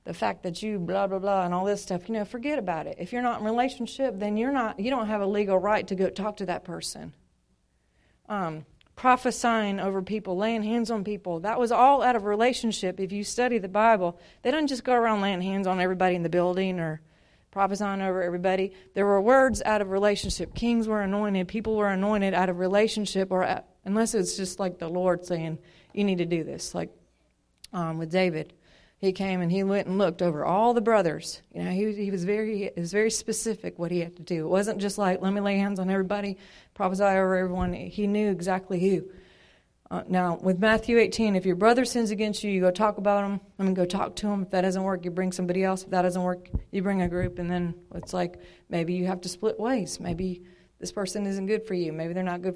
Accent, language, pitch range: American, English, 180-215 Hz